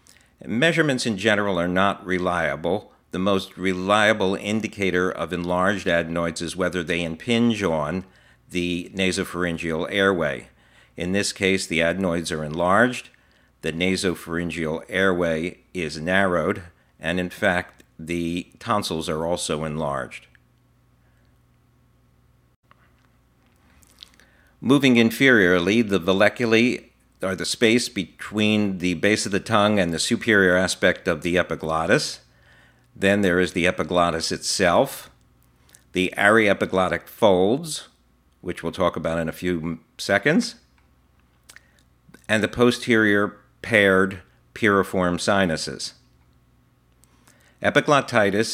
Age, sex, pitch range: 50-69, male, 80-100 Hz